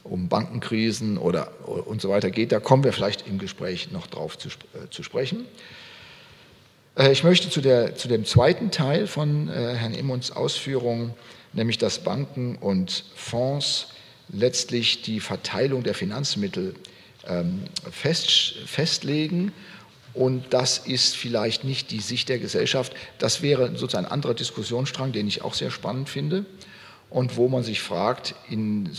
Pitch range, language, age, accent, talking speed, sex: 110-135 Hz, German, 40-59, German, 150 wpm, male